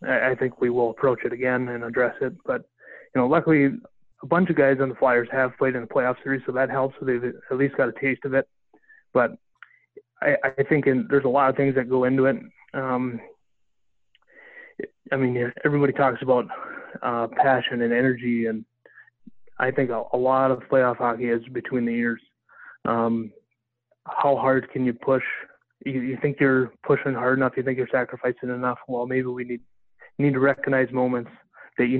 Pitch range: 120-135 Hz